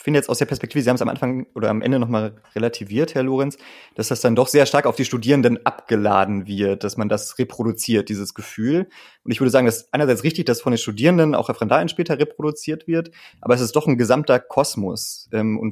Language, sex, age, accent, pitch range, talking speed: German, male, 30-49, German, 110-135 Hz, 235 wpm